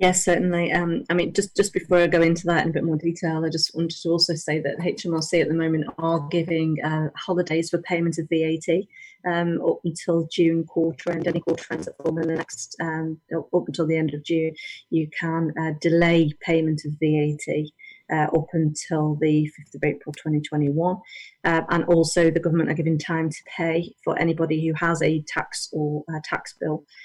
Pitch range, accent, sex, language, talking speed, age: 160-180 Hz, British, female, English, 195 wpm, 30-49